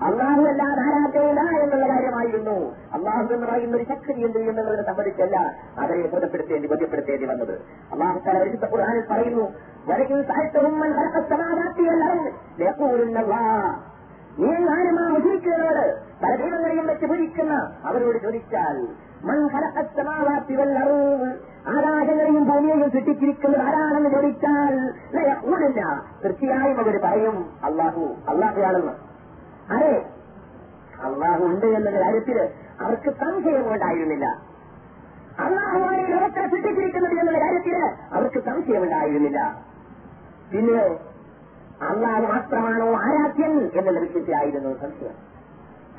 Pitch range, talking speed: 220-310 Hz, 55 wpm